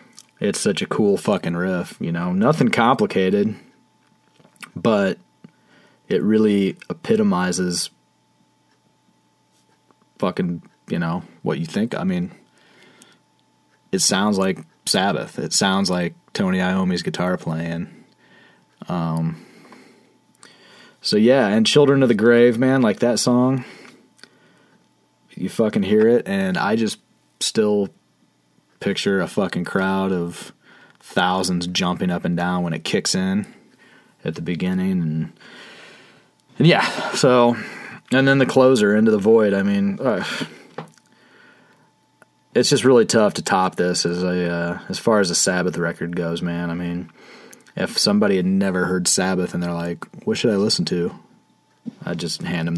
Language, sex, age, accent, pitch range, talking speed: English, male, 30-49, American, 85-130 Hz, 135 wpm